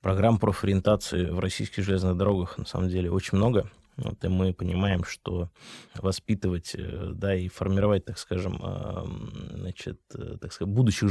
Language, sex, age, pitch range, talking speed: Russian, male, 20-39, 95-110 Hz, 140 wpm